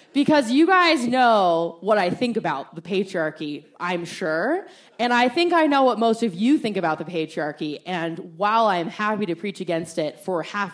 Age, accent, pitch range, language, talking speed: 20-39, American, 160-220 Hz, English, 195 wpm